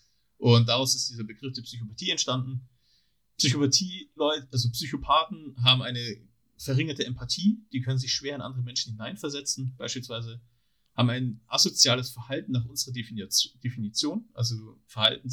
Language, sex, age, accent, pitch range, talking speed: German, male, 40-59, German, 115-135 Hz, 130 wpm